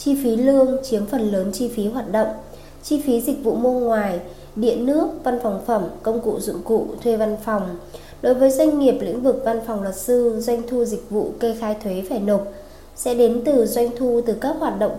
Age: 20-39